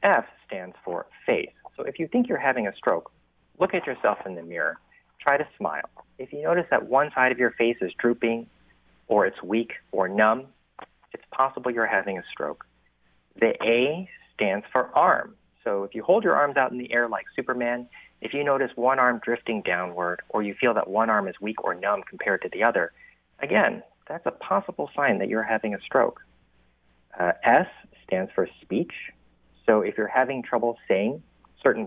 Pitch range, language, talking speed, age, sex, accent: 90-125 Hz, English, 195 wpm, 40-59, male, American